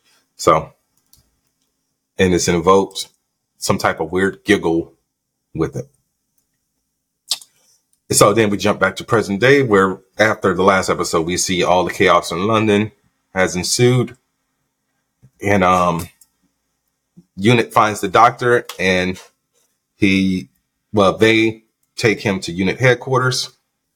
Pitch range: 95-110 Hz